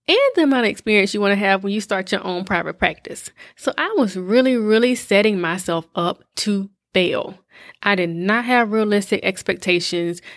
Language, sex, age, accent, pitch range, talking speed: English, female, 20-39, American, 185-235 Hz, 185 wpm